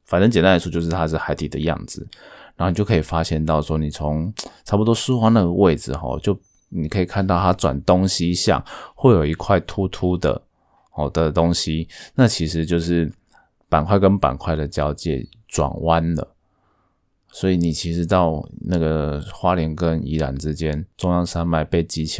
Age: 20-39